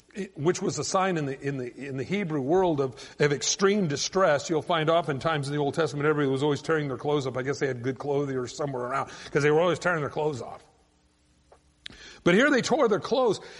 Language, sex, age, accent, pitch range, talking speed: English, male, 50-69, American, 135-200 Hz, 240 wpm